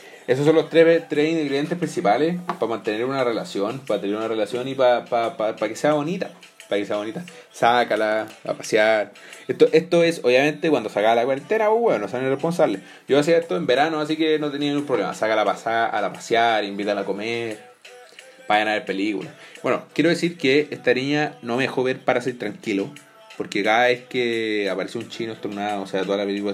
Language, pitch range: Spanish, 110-155 Hz